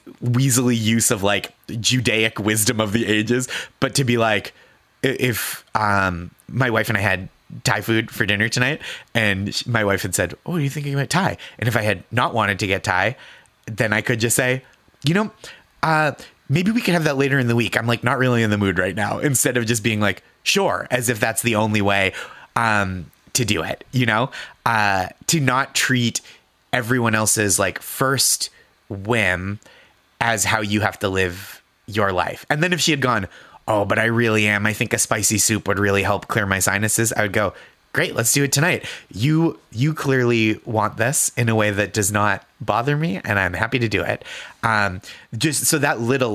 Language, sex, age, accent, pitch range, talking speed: English, male, 20-39, American, 100-125 Hz, 205 wpm